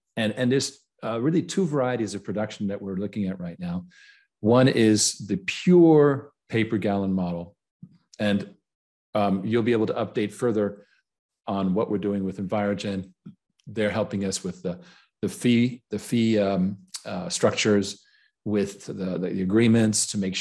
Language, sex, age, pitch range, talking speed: English, male, 40-59, 100-130 Hz, 160 wpm